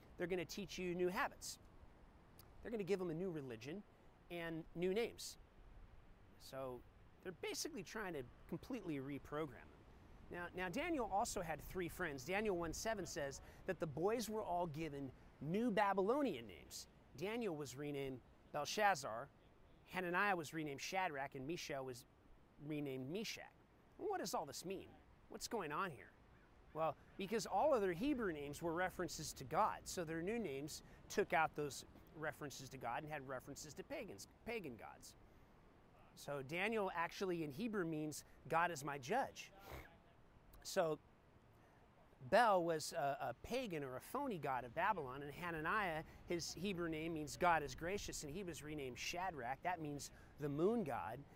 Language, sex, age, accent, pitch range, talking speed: English, male, 30-49, American, 140-185 Hz, 160 wpm